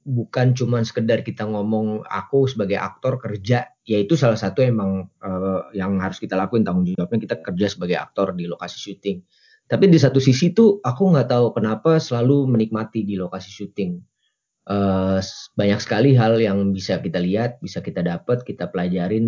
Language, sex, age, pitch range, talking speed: Indonesian, male, 20-39, 110-135 Hz, 170 wpm